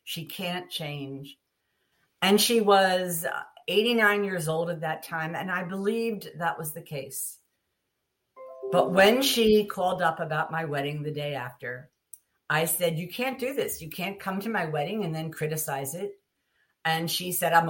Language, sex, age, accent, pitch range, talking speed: English, female, 50-69, American, 145-195 Hz, 170 wpm